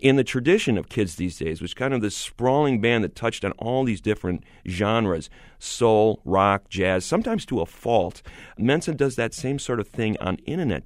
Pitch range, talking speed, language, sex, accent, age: 95-120 Hz, 205 wpm, English, male, American, 40-59